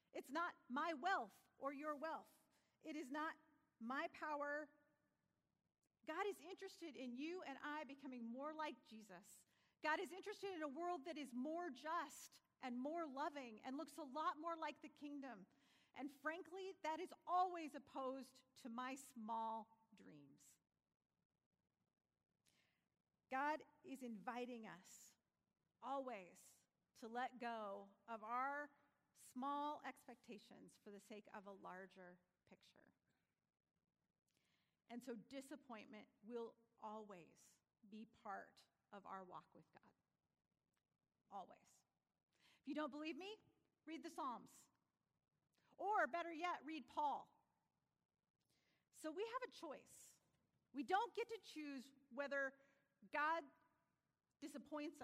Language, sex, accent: English, female, American